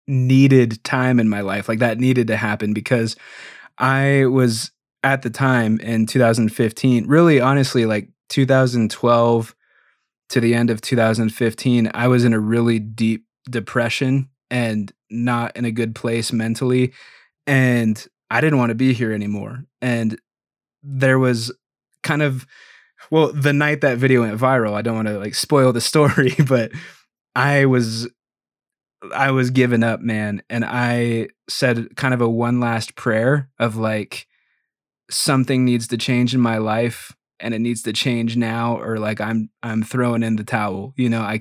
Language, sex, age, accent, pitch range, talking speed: English, male, 20-39, American, 115-130 Hz, 160 wpm